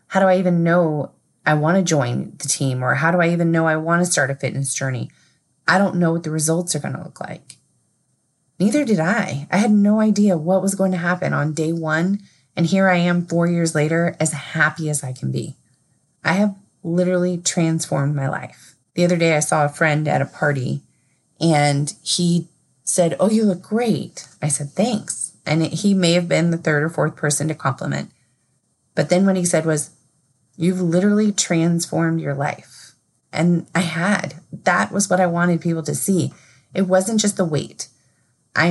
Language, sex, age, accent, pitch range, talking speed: English, female, 30-49, American, 145-180 Hz, 200 wpm